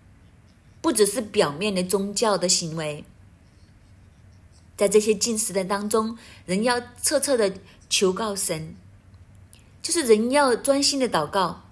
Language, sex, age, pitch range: Chinese, female, 30-49, 150-225 Hz